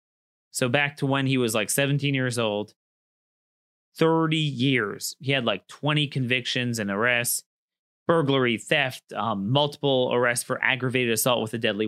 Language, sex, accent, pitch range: English, male, American, 115-140 Hz